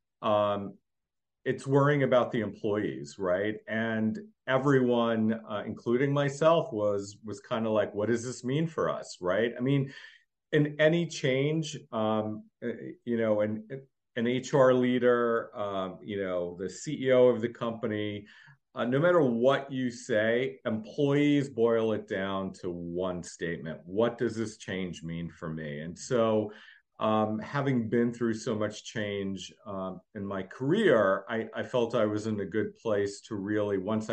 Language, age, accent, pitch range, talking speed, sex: English, 40-59, American, 100-125 Hz, 155 wpm, male